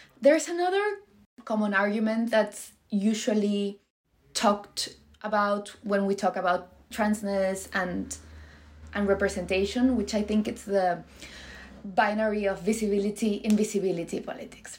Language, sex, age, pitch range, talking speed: English, female, 20-39, 200-240 Hz, 105 wpm